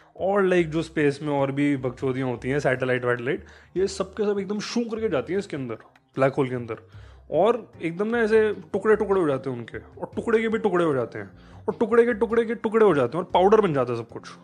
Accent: native